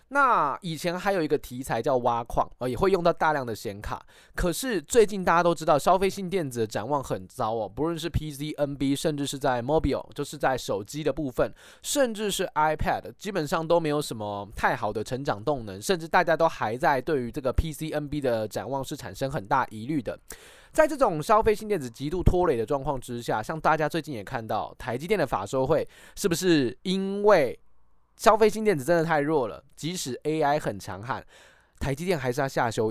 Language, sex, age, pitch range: Chinese, male, 20-39, 135-195 Hz